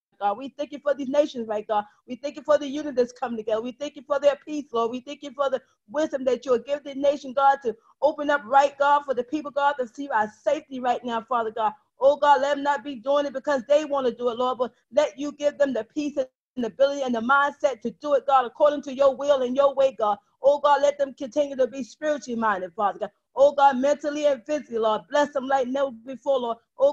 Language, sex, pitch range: English, female, 250-290 Hz